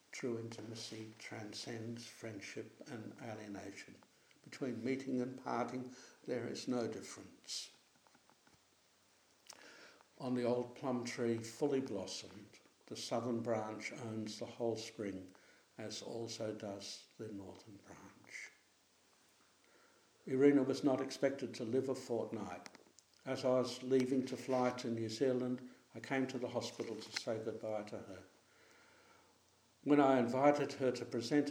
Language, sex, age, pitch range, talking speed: English, male, 60-79, 110-130 Hz, 130 wpm